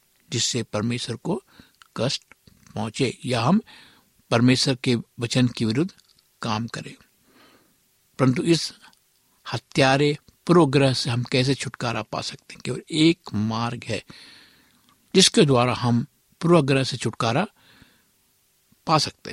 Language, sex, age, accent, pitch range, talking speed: Hindi, male, 60-79, native, 120-160 Hz, 110 wpm